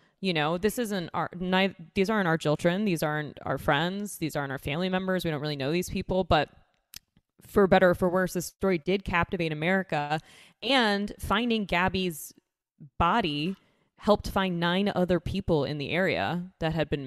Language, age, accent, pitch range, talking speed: English, 20-39, American, 165-200 Hz, 180 wpm